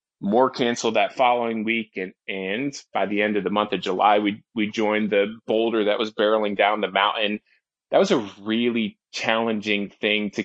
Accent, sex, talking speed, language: American, male, 190 wpm, English